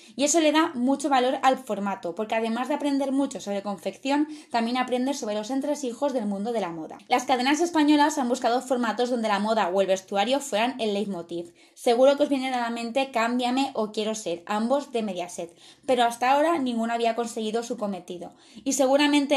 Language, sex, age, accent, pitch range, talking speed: Spanish, female, 20-39, Spanish, 215-270 Hz, 200 wpm